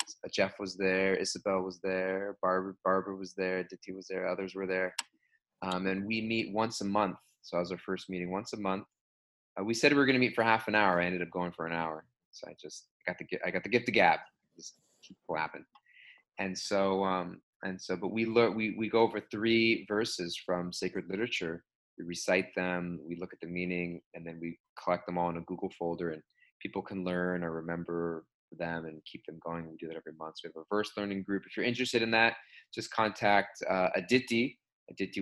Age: 20-39